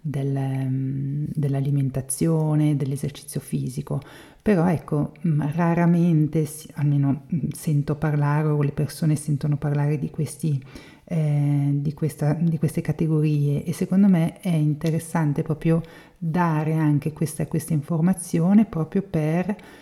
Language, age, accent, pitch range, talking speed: Italian, 40-59, native, 150-170 Hz, 110 wpm